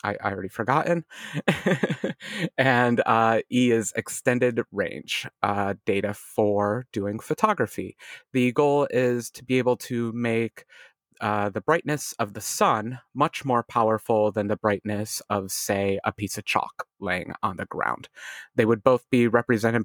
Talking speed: 150 wpm